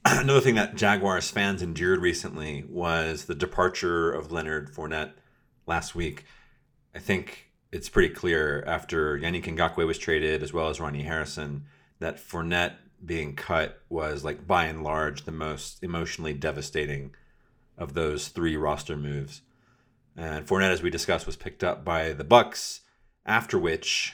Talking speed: 150 wpm